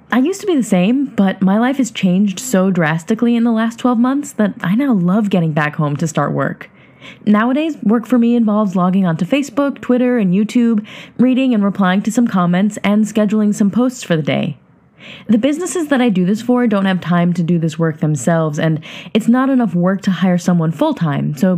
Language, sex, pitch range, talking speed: English, female, 180-235 Hz, 215 wpm